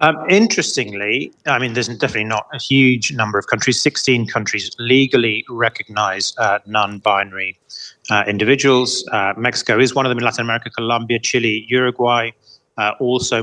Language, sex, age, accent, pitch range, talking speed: English, male, 30-49, British, 110-130 Hz, 150 wpm